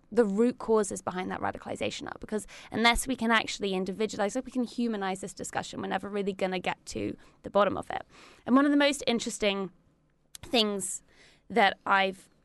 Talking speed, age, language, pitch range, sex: 190 wpm, 20-39, English, 190-240 Hz, female